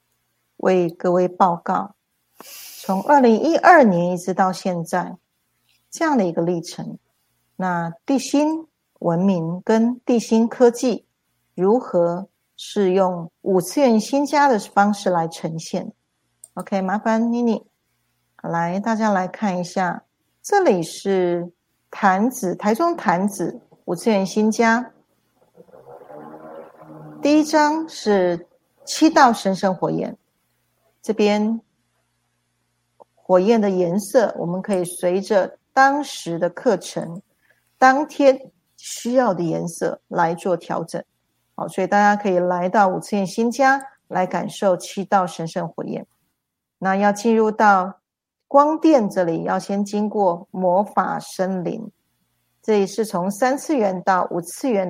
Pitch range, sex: 175-230 Hz, female